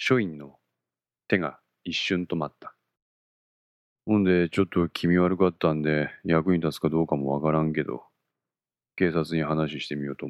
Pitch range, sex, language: 75-95 Hz, male, Japanese